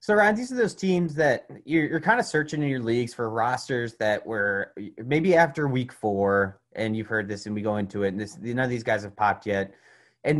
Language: English